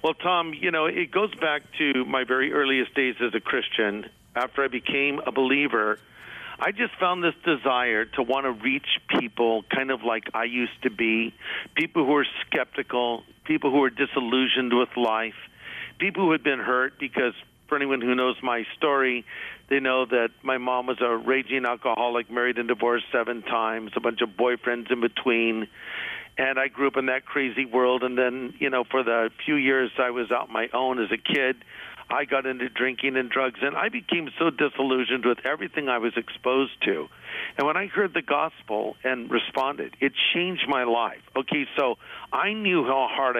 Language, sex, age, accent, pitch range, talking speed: English, male, 50-69, American, 120-150 Hz, 190 wpm